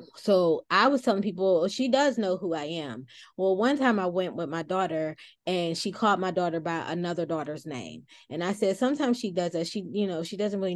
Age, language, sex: 20-39, English, female